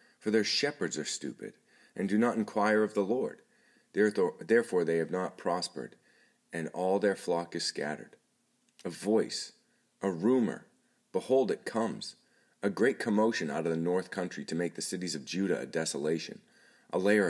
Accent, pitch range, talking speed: American, 80-105 Hz, 165 wpm